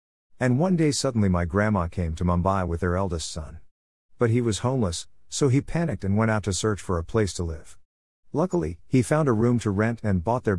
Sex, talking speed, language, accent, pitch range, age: male, 225 wpm, English, American, 85-120 Hz, 50-69